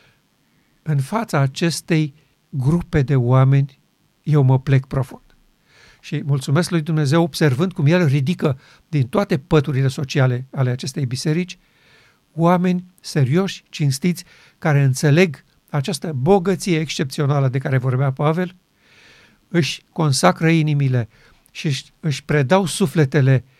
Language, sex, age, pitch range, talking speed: Romanian, male, 50-69, 140-175 Hz, 110 wpm